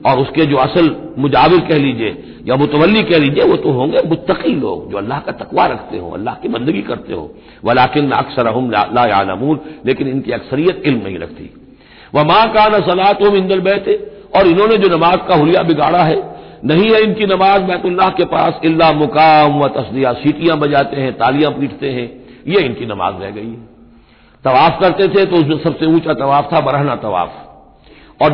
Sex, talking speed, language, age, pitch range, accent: male, 195 wpm, Hindi, 60-79, 135-170 Hz, native